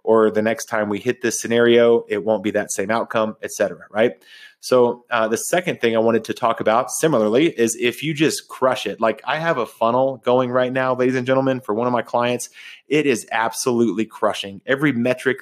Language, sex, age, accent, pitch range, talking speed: English, male, 30-49, American, 110-130 Hz, 220 wpm